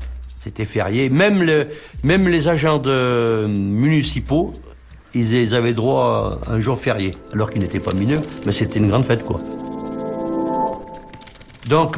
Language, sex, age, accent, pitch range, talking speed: French, male, 60-79, French, 100-135 Hz, 140 wpm